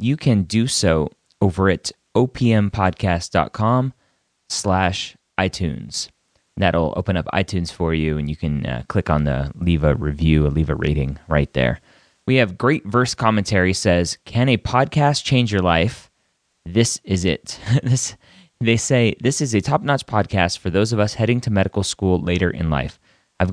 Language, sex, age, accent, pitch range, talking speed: English, male, 30-49, American, 80-105 Hz, 165 wpm